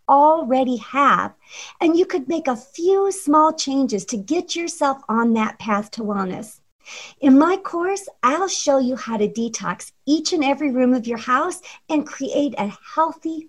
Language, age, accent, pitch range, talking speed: English, 50-69, American, 240-310 Hz, 170 wpm